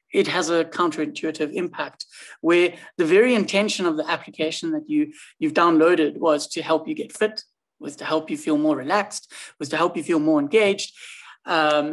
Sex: male